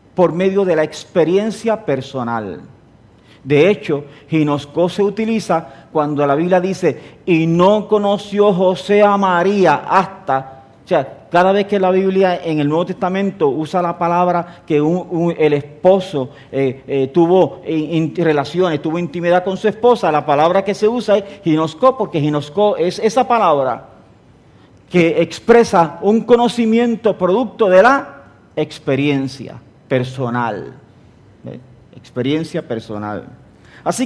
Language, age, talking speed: English, 50-69, 125 wpm